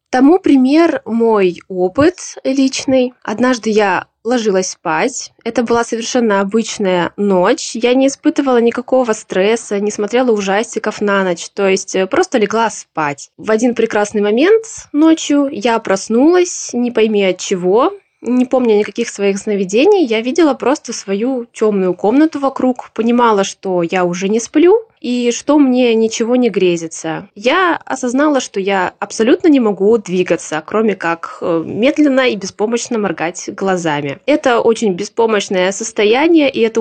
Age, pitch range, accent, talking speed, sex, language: 20-39, 200-255 Hz, native, 140 wpm, female, Russian